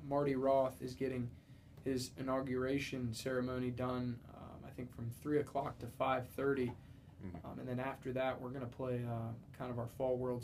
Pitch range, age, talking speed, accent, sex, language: 125-135 Hz, 20-39, 170 wpm, American, male, English